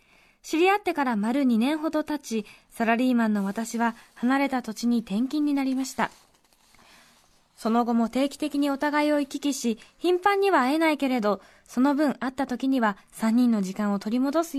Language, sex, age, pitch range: Japanese, female, 20-39, 225-295 Hz